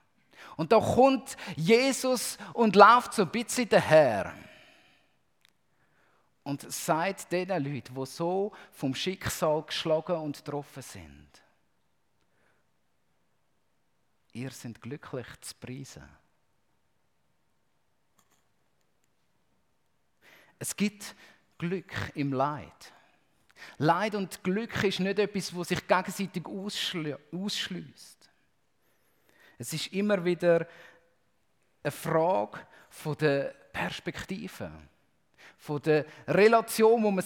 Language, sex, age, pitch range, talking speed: German, male, 50-69, 150-205 Hz, 95 wpm